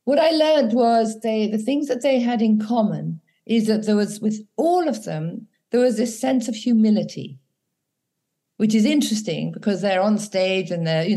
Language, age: English, 50-69